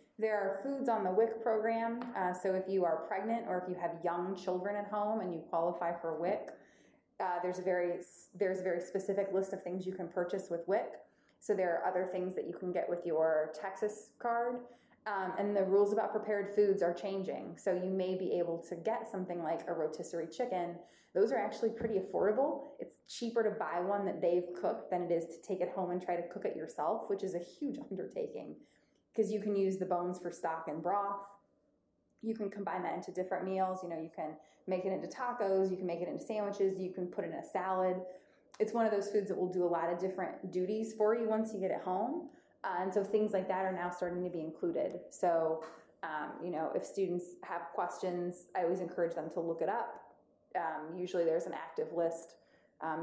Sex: female